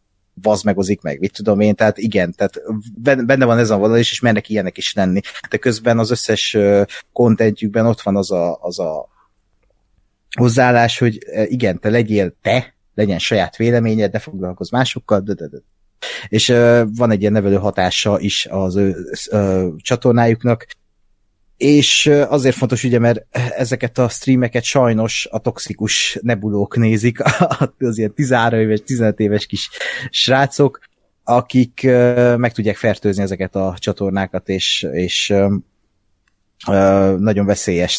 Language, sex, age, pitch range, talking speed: Hungarian, male, 30-49, 100-120 Hz, 140 wpm